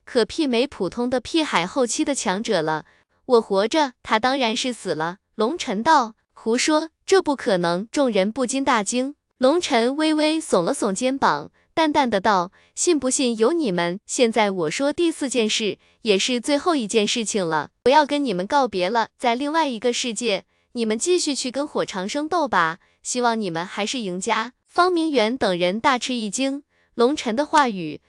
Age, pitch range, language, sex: 20-39, 215-285 Hz, Chinese, female